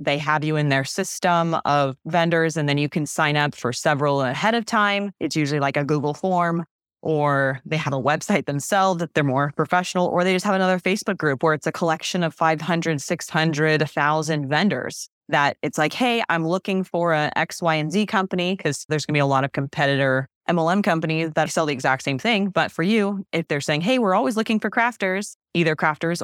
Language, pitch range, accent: English, 155-185 Hz, American